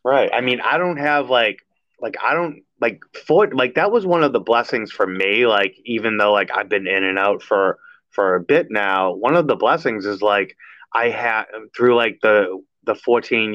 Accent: American